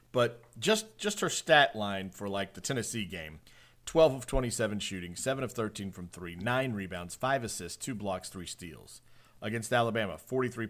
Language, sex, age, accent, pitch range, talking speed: English, male, 40-59, American, 95-120 Hz, 175 wpm